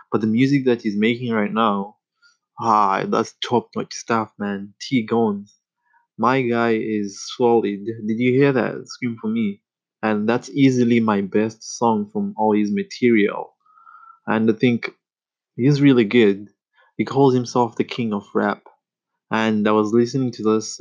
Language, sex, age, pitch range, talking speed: English, male, 20-39, 110-140 Hz, 155 wpm